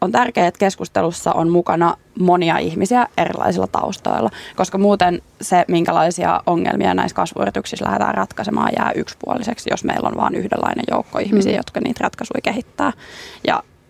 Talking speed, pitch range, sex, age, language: 145 wpm, 165-190 Hz, female, 20-39, Finnish